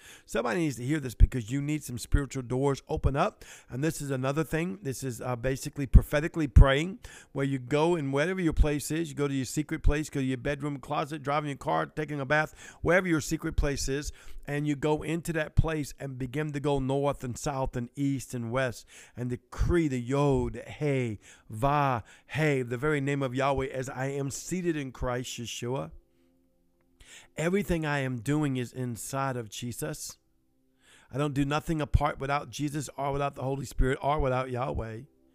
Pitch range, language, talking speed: 130-155 Hz, English, 190 wpm